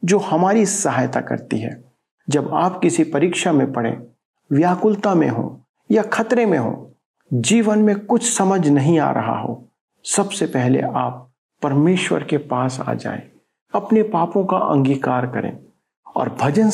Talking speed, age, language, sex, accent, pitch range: 145 wpm, 50-69, Hindi, male, native, 135-195 Hz